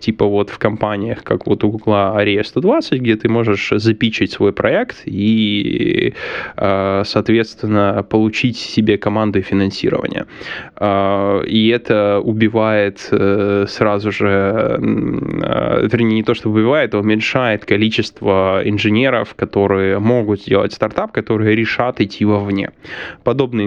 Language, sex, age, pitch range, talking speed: Russian, male, 10-29, 100-115 Hz, 115 wpm